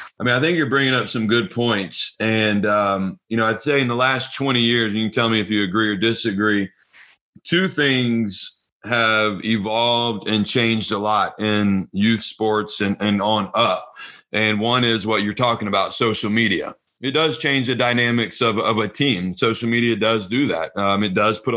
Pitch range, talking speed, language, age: 105-125 Hz, 200 wpm, English, 40-59